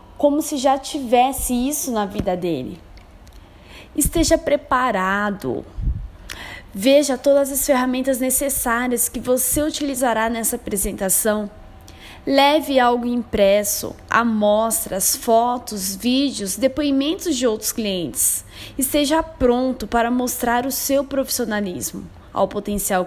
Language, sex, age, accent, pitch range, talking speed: Portuguese, female, 20-39, Brazilian, 205-270 Hz, 100 wpm